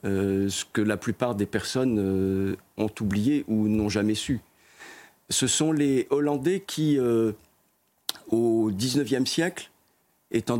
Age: 50-69